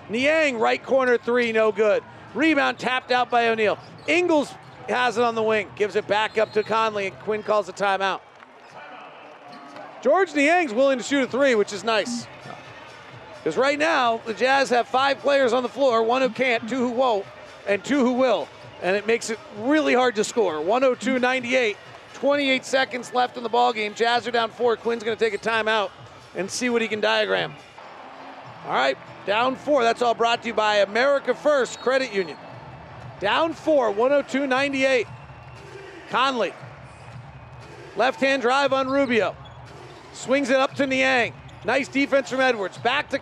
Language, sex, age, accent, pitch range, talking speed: English, male, 40-59, American, 220-270 Hz, 170 wpm